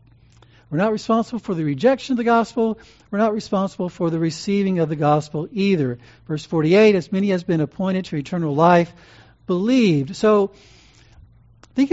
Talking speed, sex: 160 wpm, male